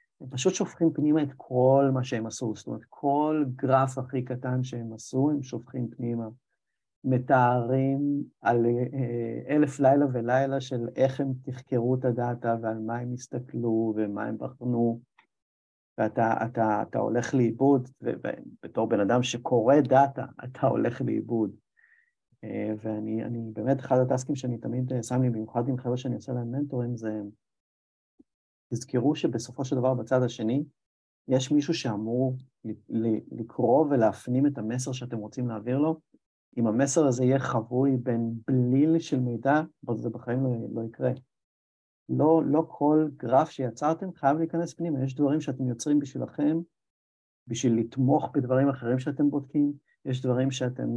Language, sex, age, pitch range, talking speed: English, male, 50-69, 115-140 Hz, 140 wpm